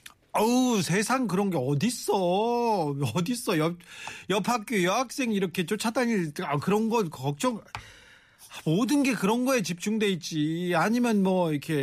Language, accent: Korean, native